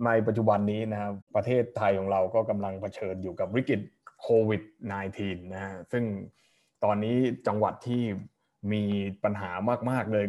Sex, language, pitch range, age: male, Thai, 100-115 Hz, 20-39